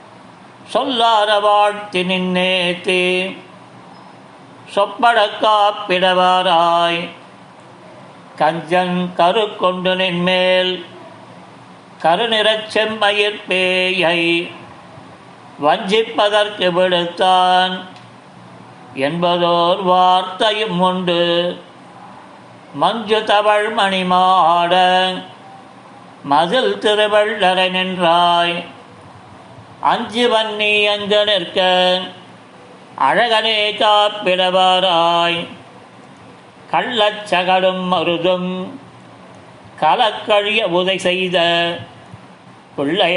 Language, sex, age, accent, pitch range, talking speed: Tamil, male, 50-69, native, 175-210 Hz, 45 wpm